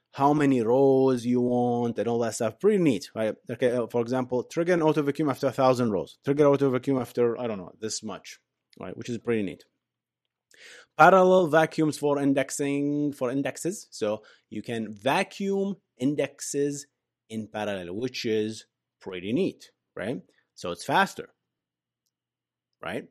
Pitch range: 110-140 Hz